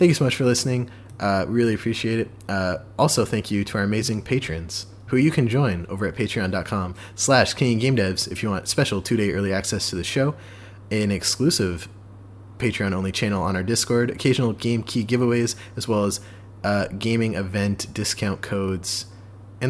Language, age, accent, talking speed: English, 20-39, American, 180 wpm